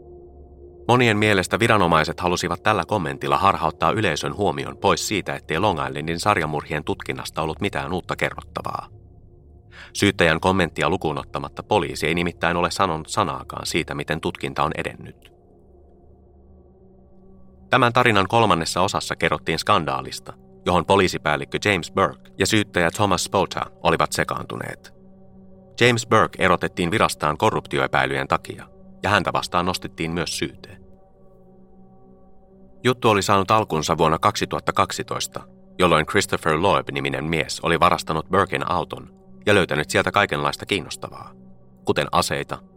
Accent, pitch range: native, 70-95 Hz